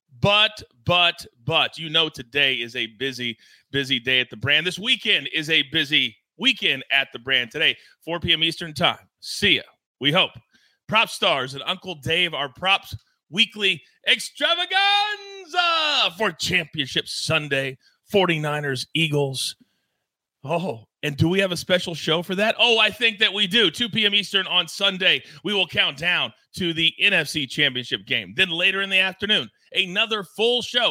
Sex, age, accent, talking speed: male, 30-49, American, 165 wpm